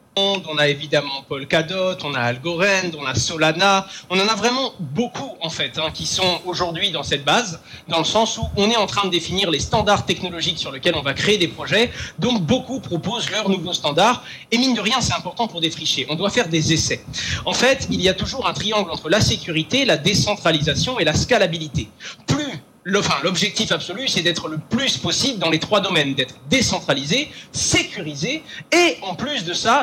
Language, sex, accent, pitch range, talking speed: French, male, French, 155-205 Hz, 205 wpm